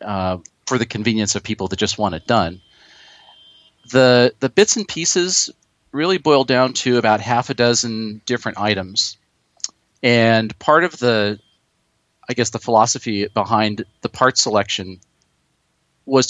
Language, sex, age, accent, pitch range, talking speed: English, male, 40-59, American, 105-125 Hz, 145 wpm